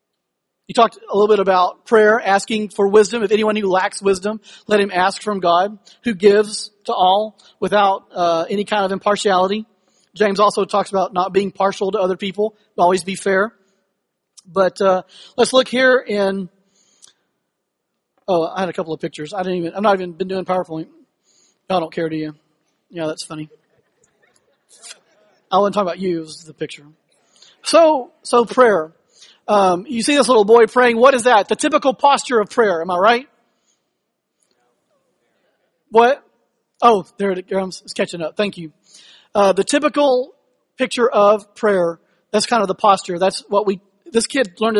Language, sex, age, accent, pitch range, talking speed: English, male, 40-59, American, 185-220 Hz, 175 wpm